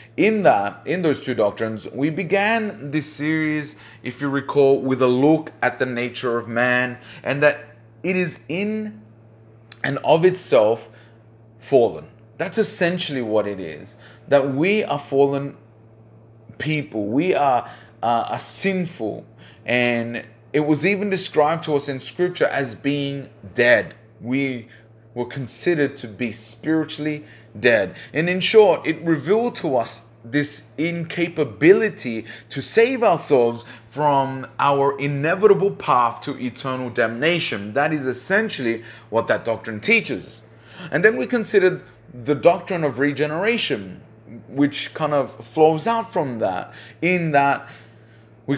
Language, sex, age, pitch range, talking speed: English, male, 30-49, 115-160 Hz, 135 wpm